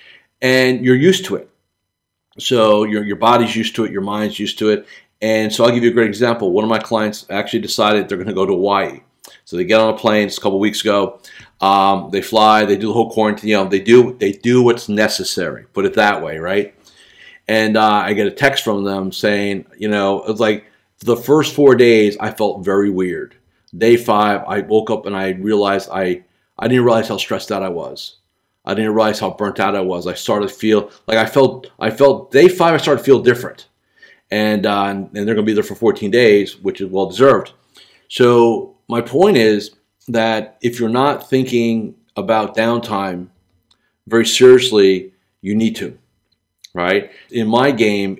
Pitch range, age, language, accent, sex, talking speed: 100-115 Hz, 40-59, English, American, male, 205 wpm